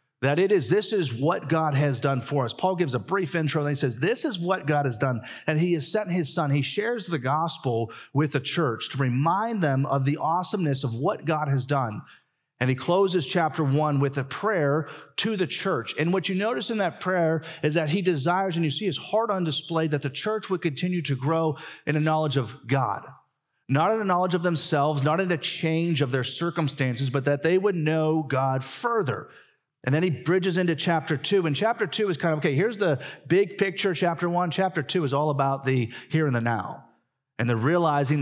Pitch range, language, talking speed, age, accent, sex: 135-175 Hz, English, 225 wpm, 40-59, American, male